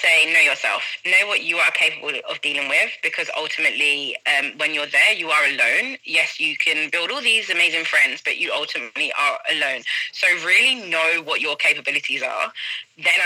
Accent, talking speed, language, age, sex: British, 185 wpm, English, 20-39, female